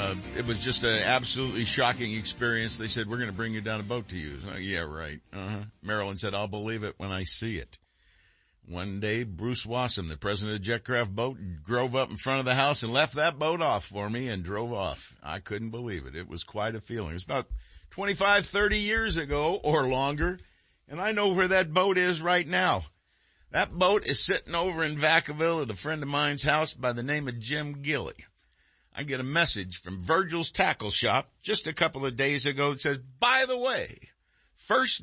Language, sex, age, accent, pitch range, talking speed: English, male, 60-79, American, 105-165 Hz, 215 wpm